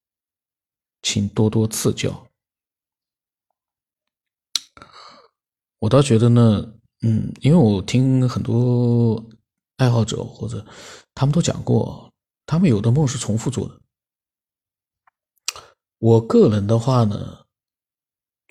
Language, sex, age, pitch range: Chinese, male, 50-69, 110-130 Hz